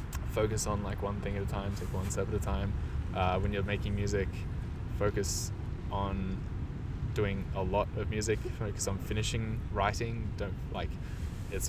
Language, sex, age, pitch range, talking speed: English, male, 20-39, 95-110 Hz, 170 wpm